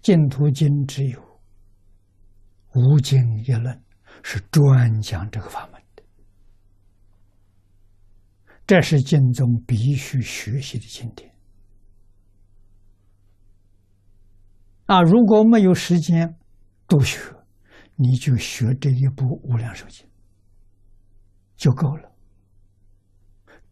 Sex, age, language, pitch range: male, 60-79, Chinese, 100-135 Hz